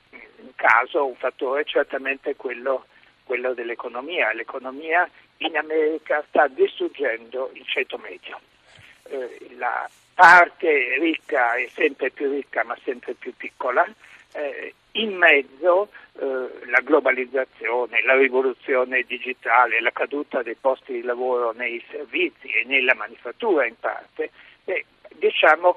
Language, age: Italian, 60-79